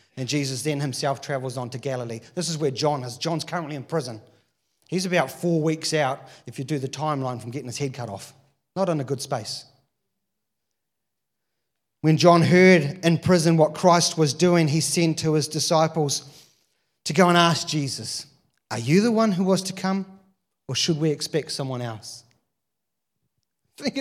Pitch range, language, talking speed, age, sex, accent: 140-190 Hz, English, 180 wpm, 30-49, male, Australian